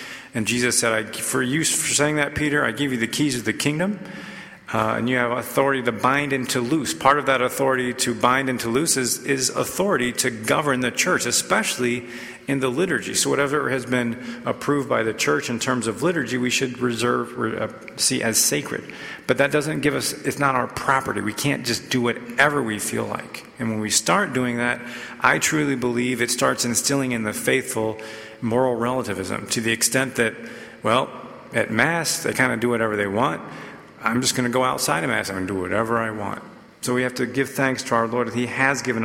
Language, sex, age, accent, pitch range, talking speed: English, male, 40-59, American, 110-135 Hz, 215 wpm